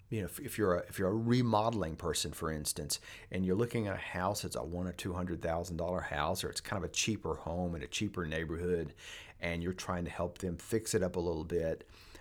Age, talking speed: 40-59, 245 wpm